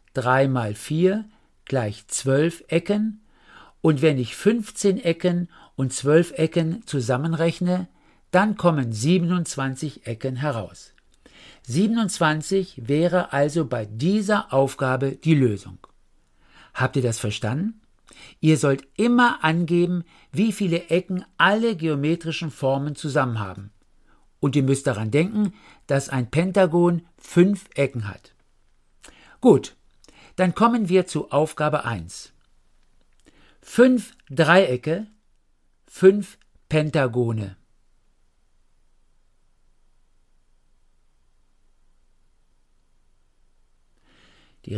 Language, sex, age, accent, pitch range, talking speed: German, male, 50-69, German, 125-185 Hz, 90 wpm